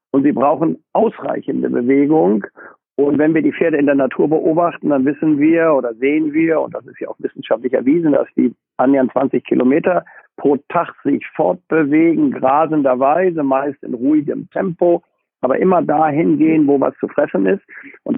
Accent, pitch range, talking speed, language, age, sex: German, 145-185 Hz, 170 wpm, German, 50-69, male